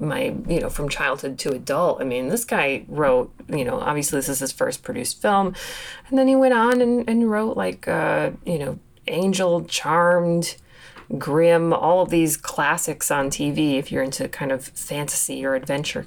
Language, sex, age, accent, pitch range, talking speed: English, female, 30-49, American, 155-230 Hz, 185 wpm